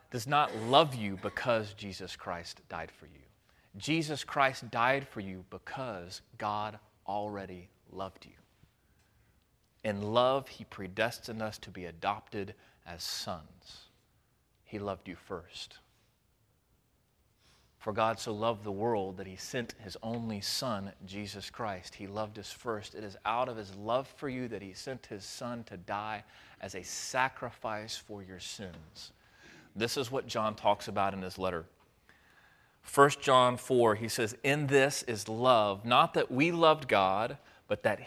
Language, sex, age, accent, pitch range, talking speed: English, male, 30-49, American, 95-125 Hz, 155 wpm